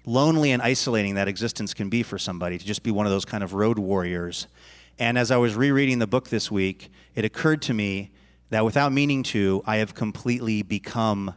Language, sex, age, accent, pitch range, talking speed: English, male, 30-49, American, 100-130 Hz, 210 wpm